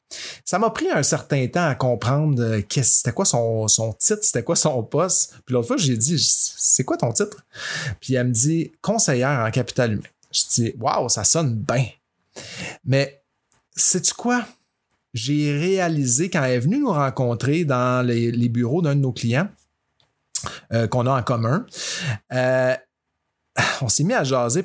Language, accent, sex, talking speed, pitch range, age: French, Canadian, male, 190 wpm, 120-150 Hz, 30-49